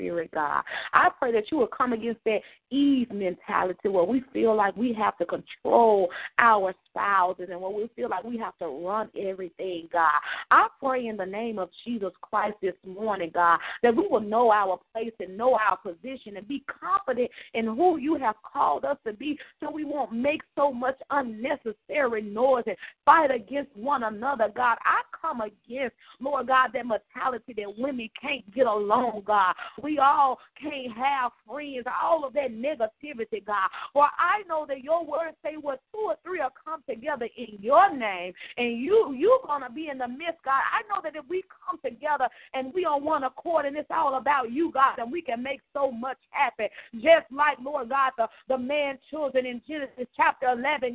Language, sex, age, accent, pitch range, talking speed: English, female, 30-49, American, 225-295 Hz, 195 wpm